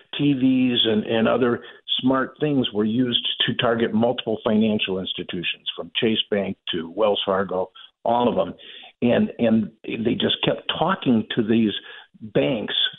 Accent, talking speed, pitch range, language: American, 145 wpm, 110-140 Hz, English